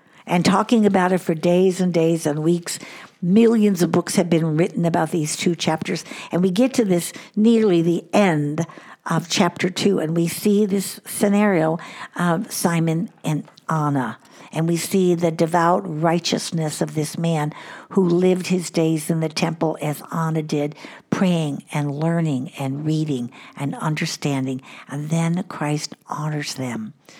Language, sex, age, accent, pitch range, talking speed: English, female, 60-79, American, 155-190 Hz, 155 wpm